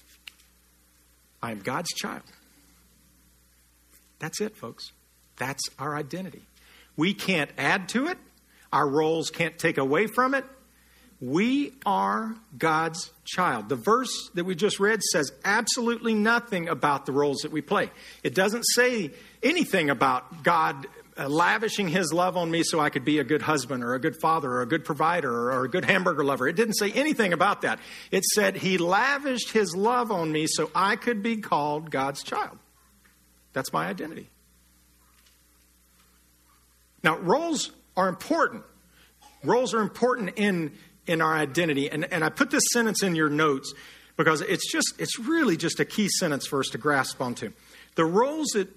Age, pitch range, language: 50-69, 130-210 Hz, English